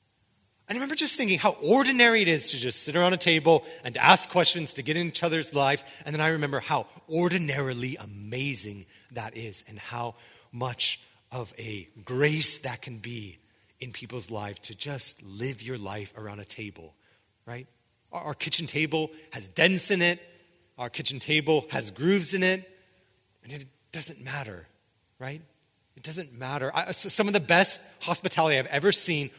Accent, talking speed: American, 175 wpm